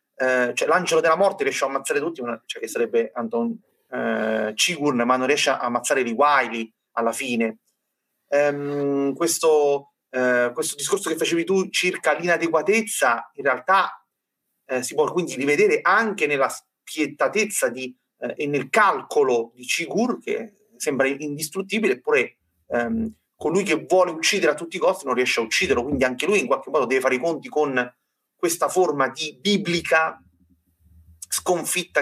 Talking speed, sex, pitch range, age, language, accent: 155 wpm, male, 125-180 Hz, 30-49, Italian, native